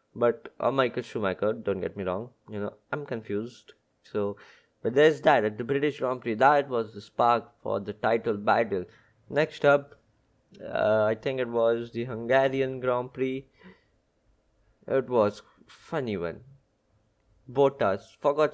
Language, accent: English, Indian